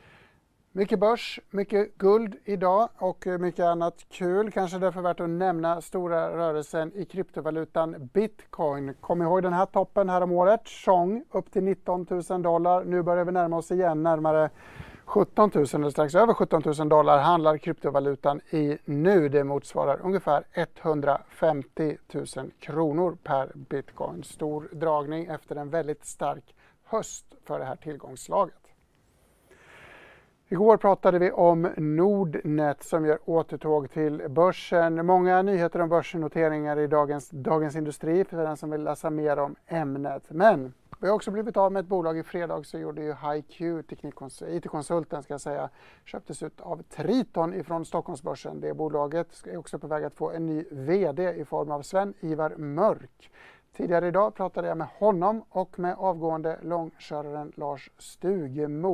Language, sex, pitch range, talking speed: English, male, 150-185 Hz, 155 wpm